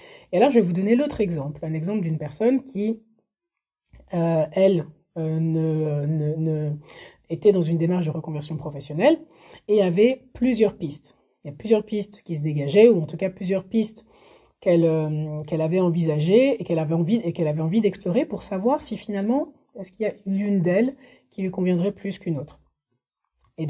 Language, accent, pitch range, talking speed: French, French, 155-215 Hz, 190 wpm